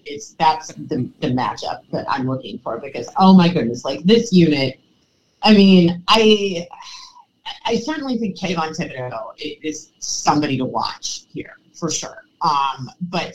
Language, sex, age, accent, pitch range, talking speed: English, female, 30-49, American, 145-210 Hz, 150 wpm